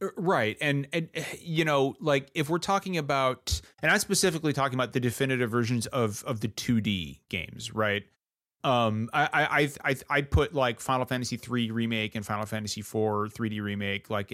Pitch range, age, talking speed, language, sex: 105-135 Hz, 30-49, 180 wpm, English, male